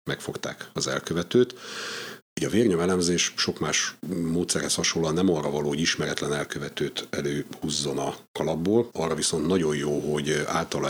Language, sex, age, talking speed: Hungarian, male, 50-69, 130 wpm